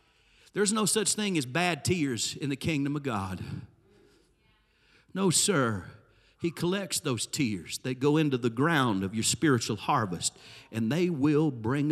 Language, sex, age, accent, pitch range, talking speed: English, male, 50-69, American, 115-155 Hz, 155 wpm